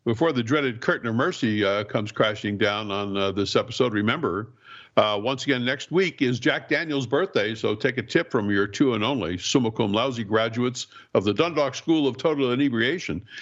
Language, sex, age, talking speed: English, male, 60-79, 195 wpm